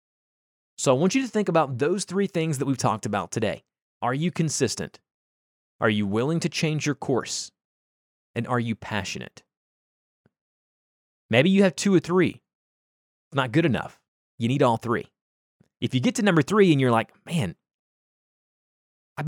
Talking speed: 165 wpm